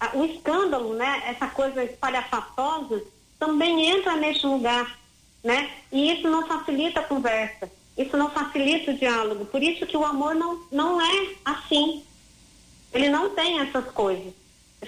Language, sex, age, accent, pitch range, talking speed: Portuguese, female, 40-59, Brazilian, 250-300 Hz, 150 wpm